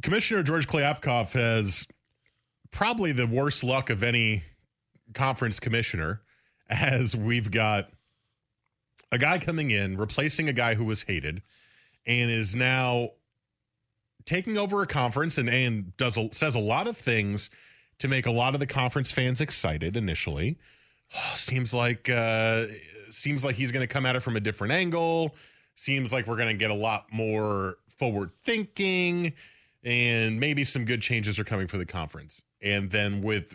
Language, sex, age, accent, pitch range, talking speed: English, male, 30-49, American, 100-130 Hz, 160 wpm